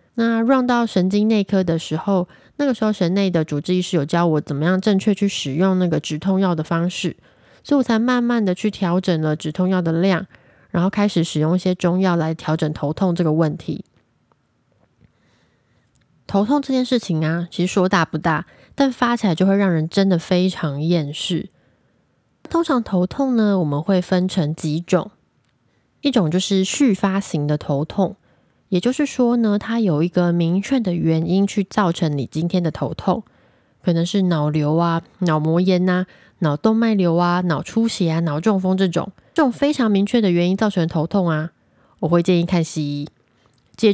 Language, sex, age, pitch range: Chinese, female, 20-39, 165-205 Hz